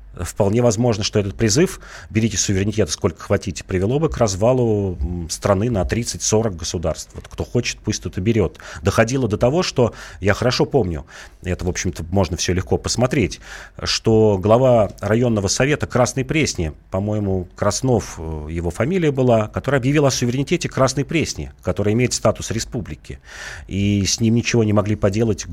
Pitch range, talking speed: 90-115 Hz, 155 wpm